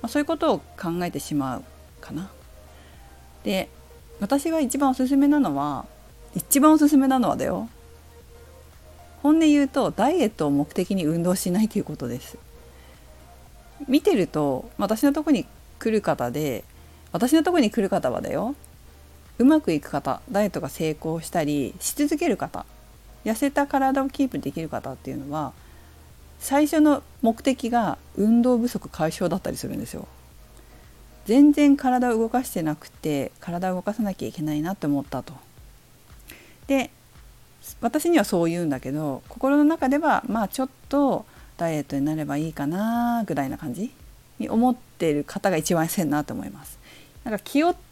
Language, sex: Japanese, female